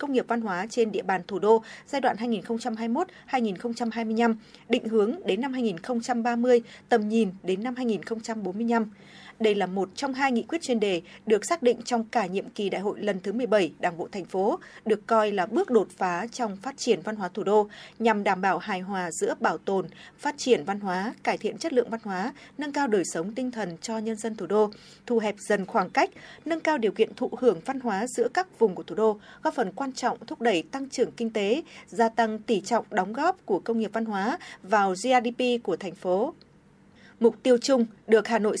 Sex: female